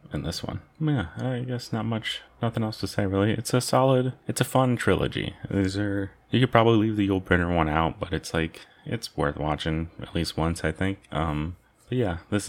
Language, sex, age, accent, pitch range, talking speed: English, male, 30-49, American, 80-110 Hz, 220 wpm